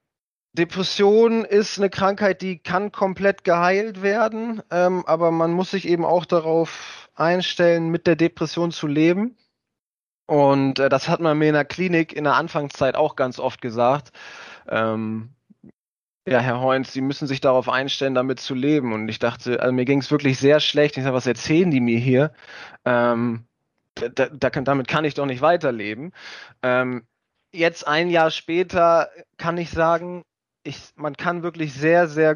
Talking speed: 170 wpm